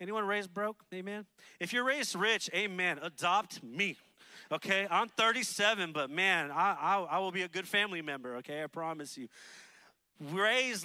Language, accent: English, American